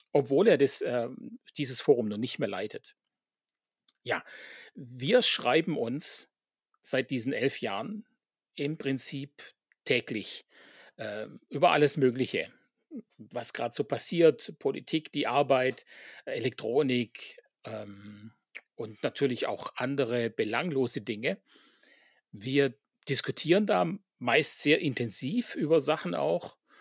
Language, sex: German, male